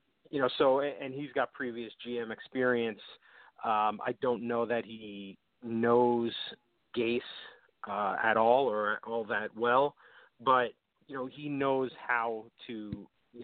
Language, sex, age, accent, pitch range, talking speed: English, male, 40-59, American, 105-125 Hz, 145 wpm